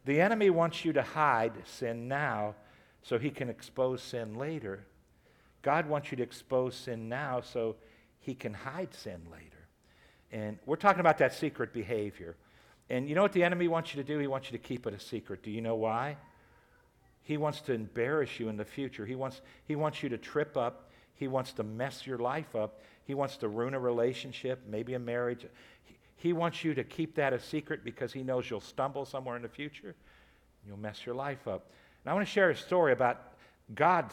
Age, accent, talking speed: 50-69, American, 210 wpm